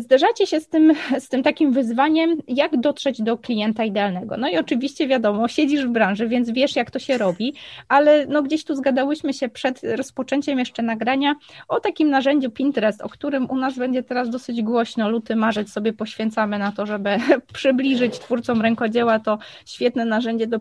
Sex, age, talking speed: female, 20-39, 175 wpm